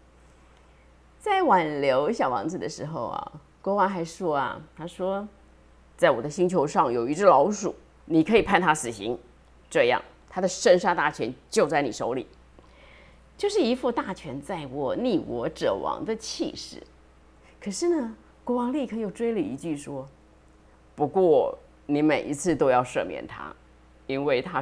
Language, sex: Chinese, female